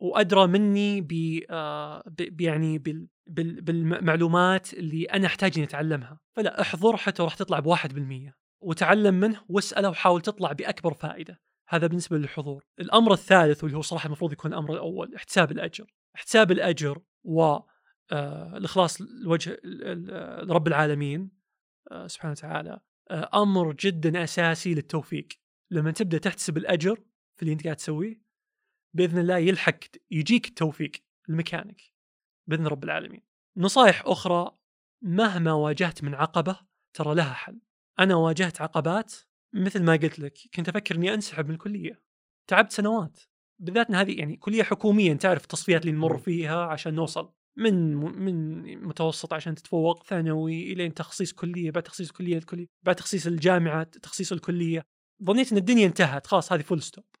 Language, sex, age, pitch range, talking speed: Arabic, male, 20-39, 160-195 Hz, 145 wpm